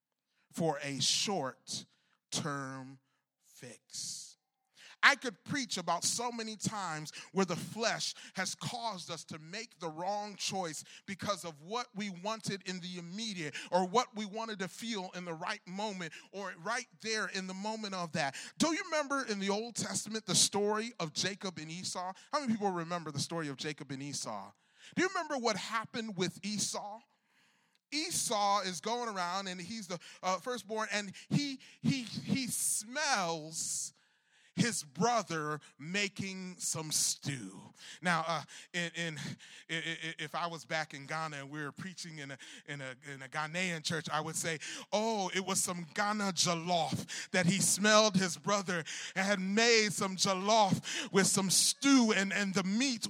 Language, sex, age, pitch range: English, male, 30-49, 165-215 Hz